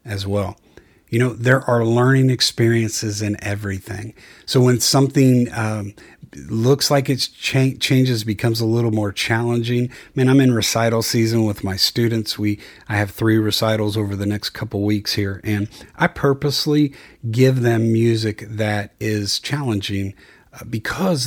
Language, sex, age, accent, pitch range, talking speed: English, male, 40-59, American, 105-135 Hz, 150 wpm